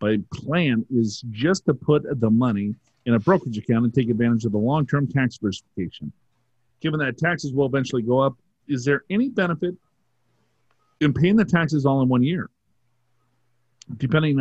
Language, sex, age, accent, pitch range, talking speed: English, male, 40-59, American, 115-155 Hz, 165 wpm